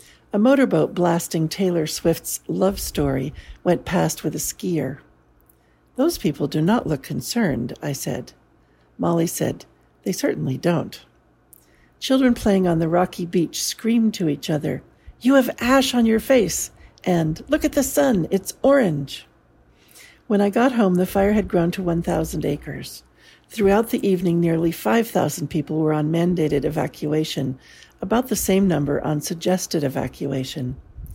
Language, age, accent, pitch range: English, 60-79, American, 155-215 Hz